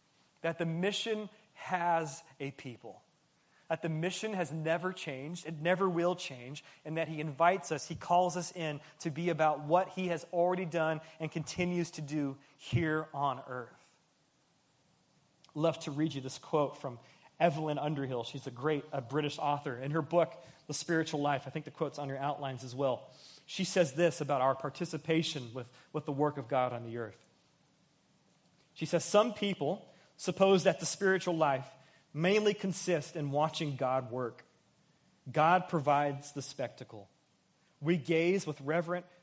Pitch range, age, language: 140-175 Hz, 30-49, English